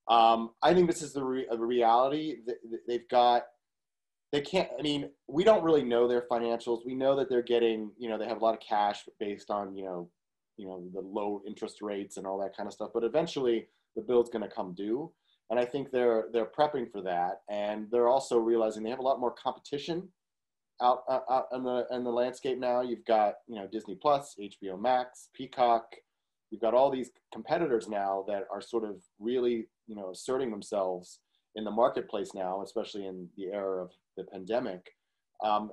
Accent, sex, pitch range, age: American, male, 105-130 Hz, 30-49